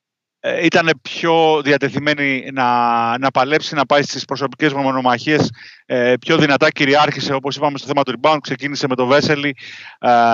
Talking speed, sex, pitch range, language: 155 wpm, male, 130-155 Hz, Greek